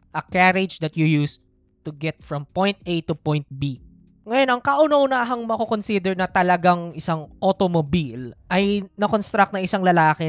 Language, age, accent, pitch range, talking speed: Filipino, 20-39, native, 145-195 Hz, 150 wpm